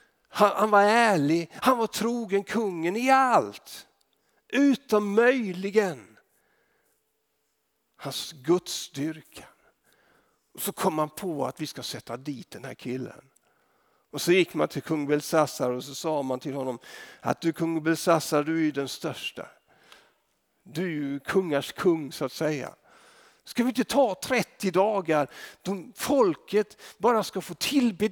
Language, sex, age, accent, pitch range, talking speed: Swedish, male, 50-69, native, 150-225 Hz, 145 wpm